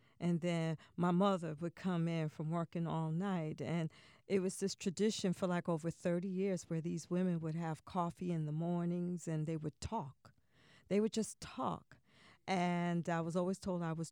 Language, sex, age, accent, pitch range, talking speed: English, female, 40-59, American, 160-200 Hz, 190 wpm